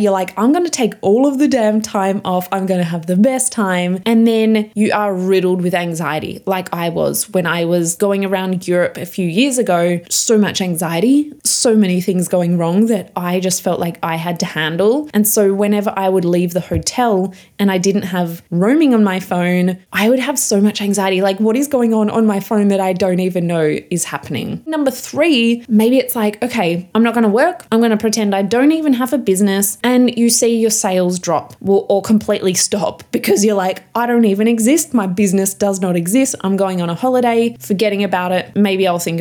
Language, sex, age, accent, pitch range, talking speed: English, female, 20-39, Australian, 185-235 Hz, 225 wpm